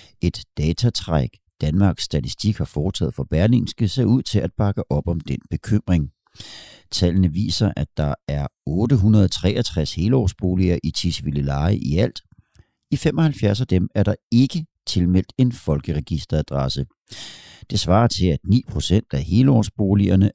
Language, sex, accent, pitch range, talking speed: Danish, male, native, 80-115 Hz, 135 wpm